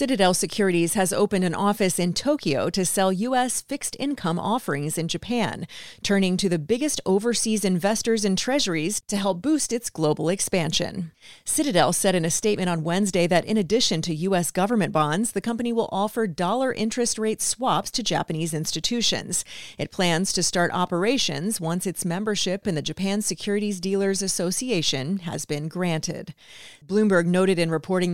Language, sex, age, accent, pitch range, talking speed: English, female, 30-49, American, 170-215 Hz, 160 wpm